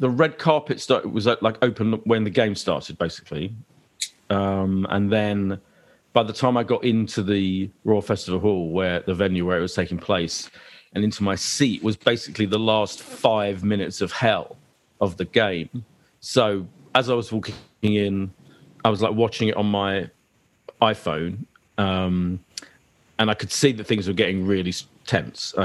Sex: male